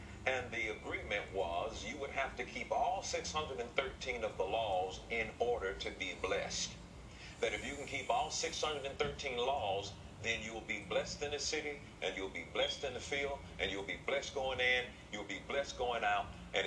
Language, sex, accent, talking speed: English, male, American, 195 wpm